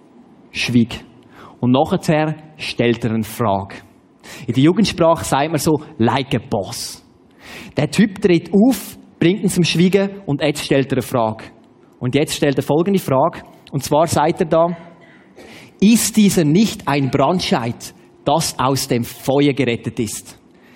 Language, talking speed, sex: German, 150 wpm, male